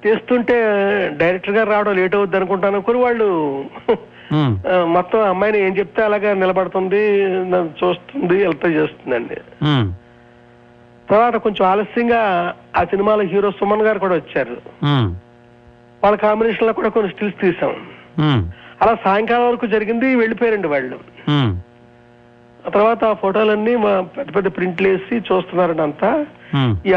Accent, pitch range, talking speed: native, 140-210 Hz, 115 wpm